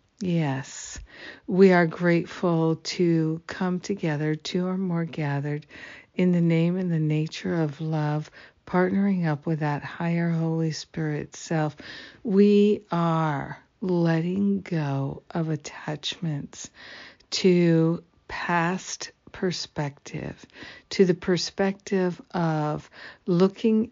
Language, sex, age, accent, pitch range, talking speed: English, female, 60-79, American, 160-190 Hz, 105 wpm